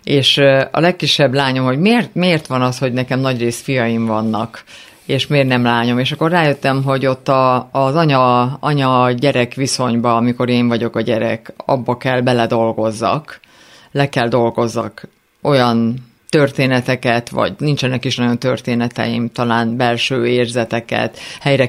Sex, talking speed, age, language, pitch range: female, 140 wpm, 50-69, Hungarian, 125-150 Hz